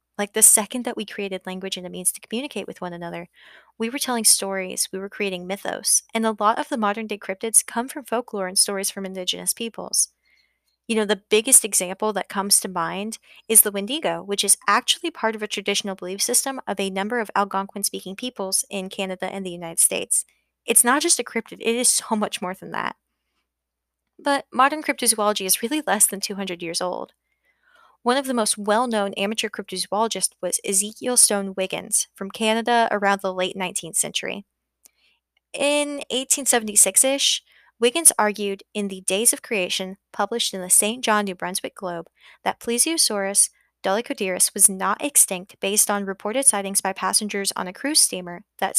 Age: 20-39